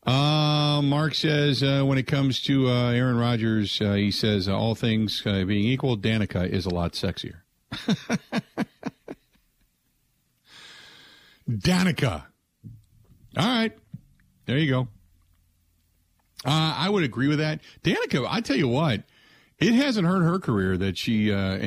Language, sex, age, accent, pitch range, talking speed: English, male, 50-69, American, 105-155 Hz, 140 wpm